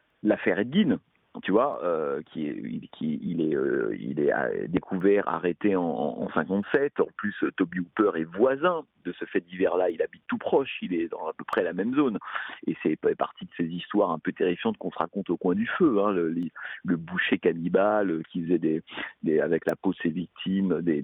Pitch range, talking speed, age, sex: 95-150 Hz, 205 wpm, 50-69, male